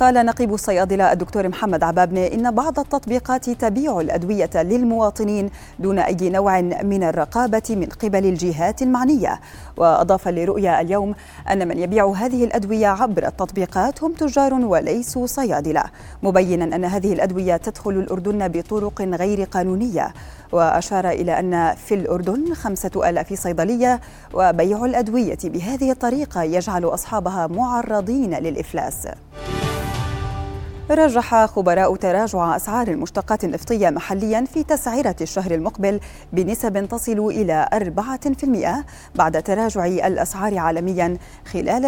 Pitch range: 185-245 Hz